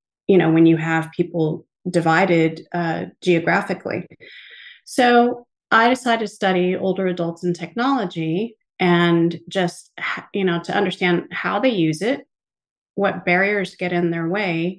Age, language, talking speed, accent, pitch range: 30-49, English, 140 wpm, American, 165-205 Hz